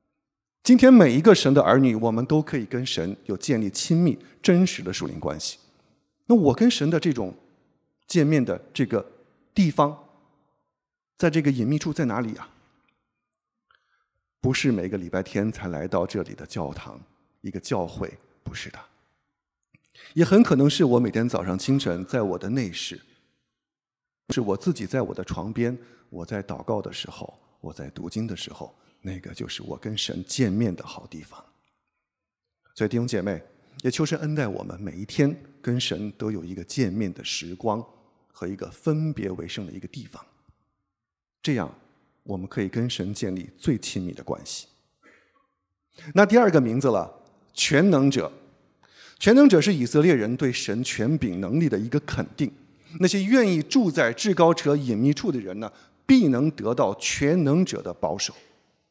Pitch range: 100-155 Hz